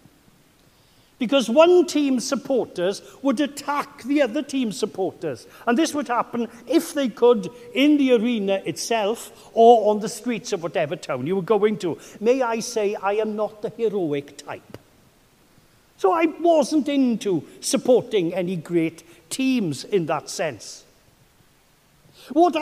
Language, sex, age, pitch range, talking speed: English, male, 60-79, 190-280 Hz, 140 wpm